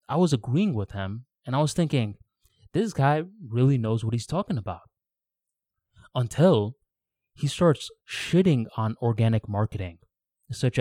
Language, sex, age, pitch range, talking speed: English, male, 20-39, 115-145 Hz, 140 wpm